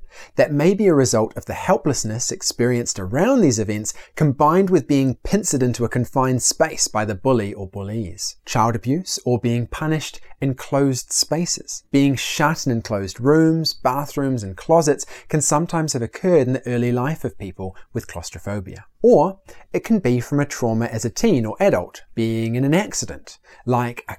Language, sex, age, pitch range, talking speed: English, male, 30-49, 110-150 Hz, 175 wpm